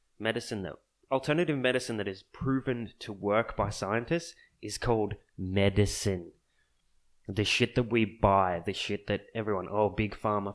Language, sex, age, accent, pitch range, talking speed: English, male, 20-39, Australian, 100-120 Hz, 150 wpm